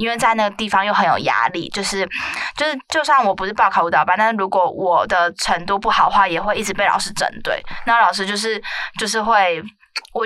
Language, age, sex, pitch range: Chinese, 20-39, female, 185-220 Hz